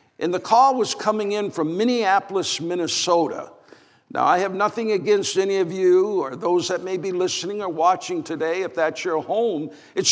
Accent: American